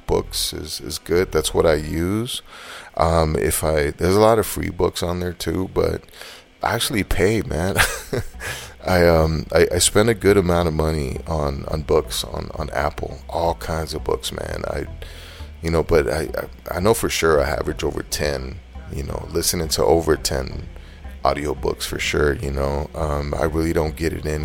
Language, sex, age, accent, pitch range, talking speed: English, male, 30-49, American, 75-85 Hz, 190 wpm